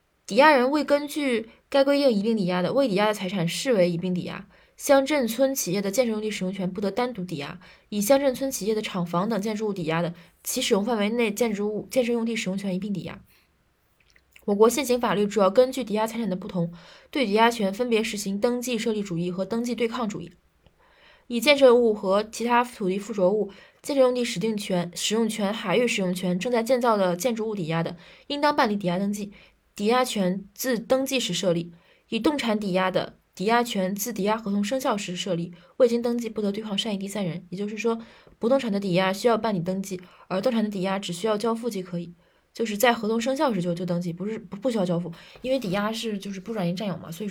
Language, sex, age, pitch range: Chinese, female, 20-39, 185-240 Hz